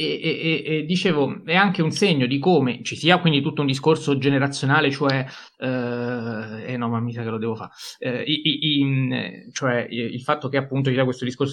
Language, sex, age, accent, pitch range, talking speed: Italian, male, 30-49, native, 120-170 Hz, 215 wpm